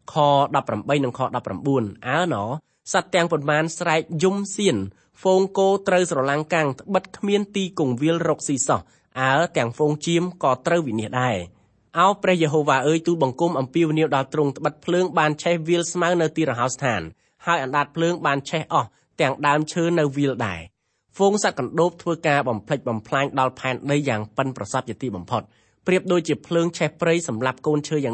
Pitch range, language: 130-170 Hz, English